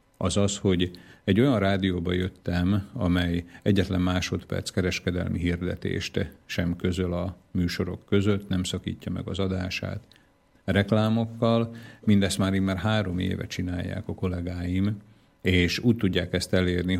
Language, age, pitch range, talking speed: Slovak, 50-69, 90-100 Hz, 130 wpm